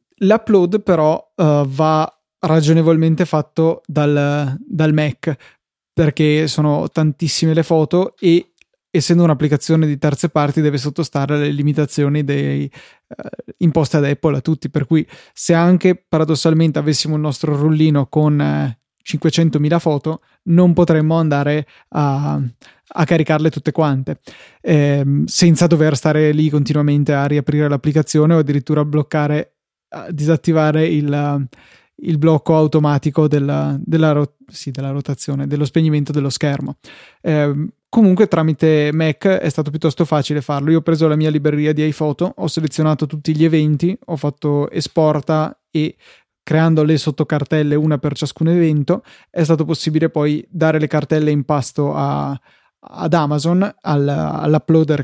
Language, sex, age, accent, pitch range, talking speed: Italian, male, 20-39, native, 150-165 Hz, 130 wpm